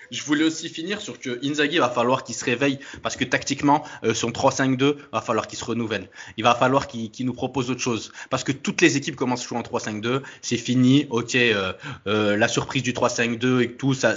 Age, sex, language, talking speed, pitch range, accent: 20-39, male, French, 230 wpm, 115-145 Hz, French